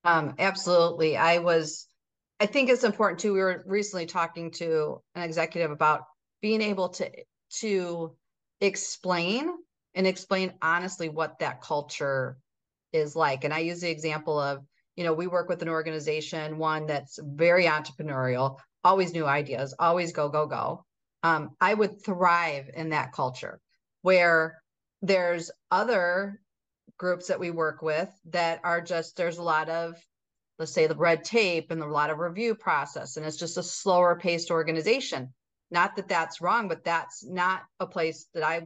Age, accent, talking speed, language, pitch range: 40-59, American, 165 wpm, English, 160-190 Hz